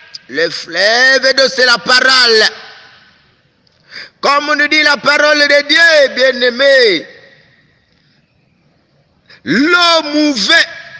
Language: English